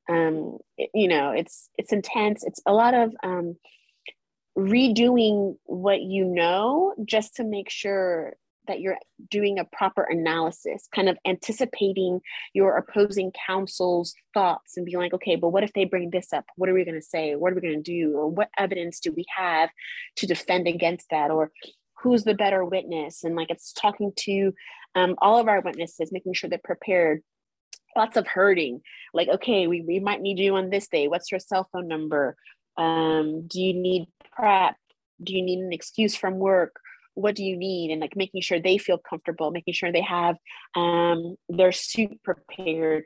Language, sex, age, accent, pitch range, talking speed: English, female, 30-49, American, 170-195 Hz, 185 wpm